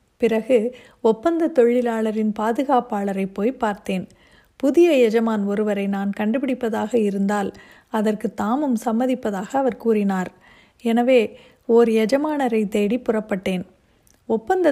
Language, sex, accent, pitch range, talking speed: Tamil, female, native, 210-250 Hz, 95 wpm